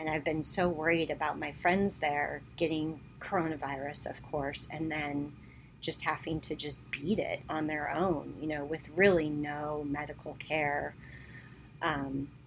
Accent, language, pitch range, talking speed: American, English, 150-175 Hz, 155 wpm